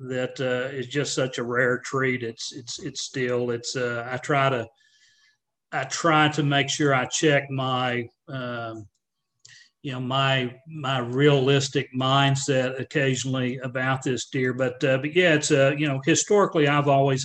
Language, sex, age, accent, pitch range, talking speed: English, male, 40-59, American, 125-150 Hz, 165 wpm